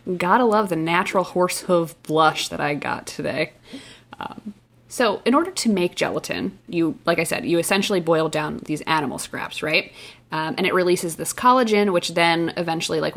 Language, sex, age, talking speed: English, female, 20-39, 180 wpm